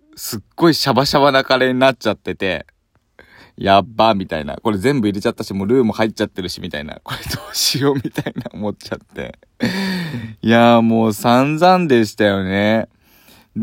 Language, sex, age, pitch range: Japanese, male, 20-39, 110-180 Hz